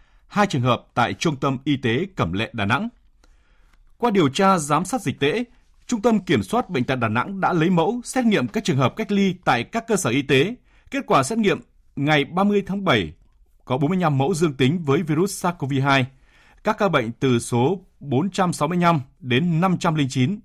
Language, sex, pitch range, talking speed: Vietnamese, male, 125-185 Hz, 195 wpm